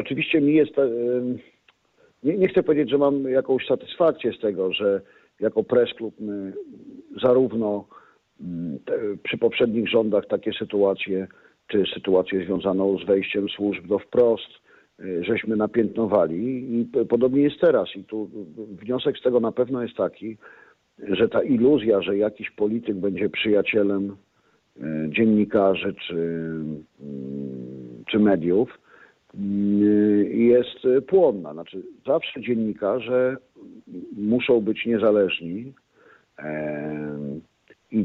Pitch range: 100-130 Hz